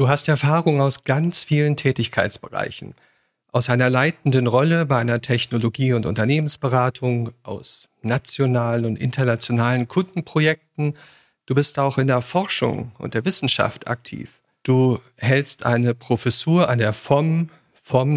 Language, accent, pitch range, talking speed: German, German, 120-145 Hz, 130 wpm